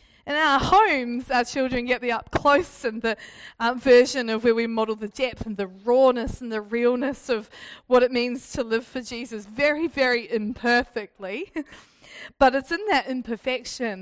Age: 20-39